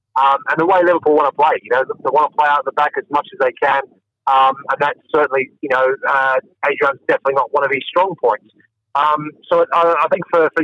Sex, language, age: male, English, 30-49